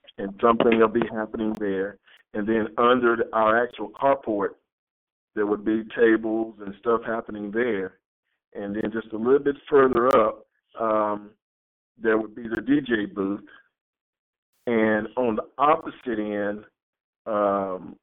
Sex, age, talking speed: male, 50-69, 135 wpm